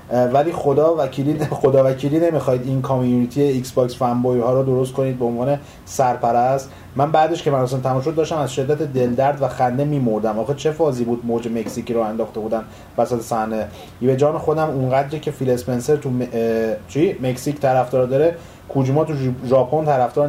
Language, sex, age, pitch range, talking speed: Persian, male, 30-49, 125-165 Hz, 175 wpm